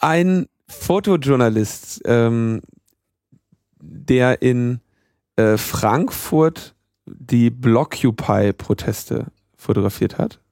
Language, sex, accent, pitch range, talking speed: German, male, German, 105-125 Hz, 65 wpm